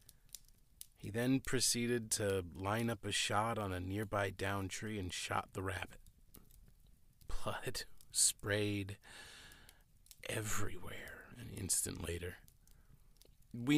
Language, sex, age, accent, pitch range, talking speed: English, male, 40-59, American, 100-125 Hz, 105 wpm